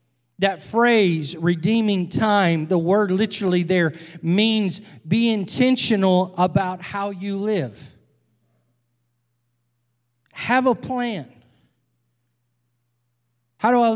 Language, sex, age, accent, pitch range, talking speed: English, male, 40-59, American, 120-195 Hz, 90 wpm